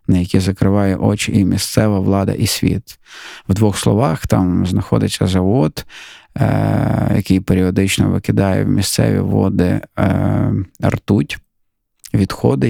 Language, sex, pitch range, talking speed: Ukrainian, male, 95-110 Hz, 115 wpm